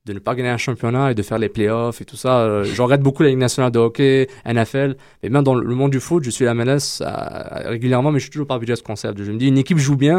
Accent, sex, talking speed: French, male, 300 wpm